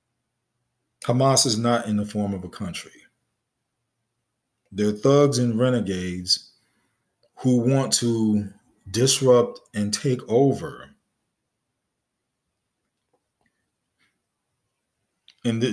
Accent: American